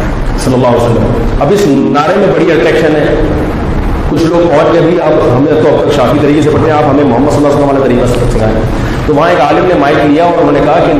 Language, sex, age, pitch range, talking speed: Urdu, male, 40-59, 130-165 Hz, 120 wpm